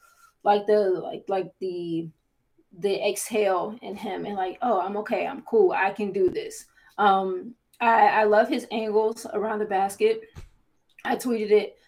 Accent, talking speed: American, 160 wpm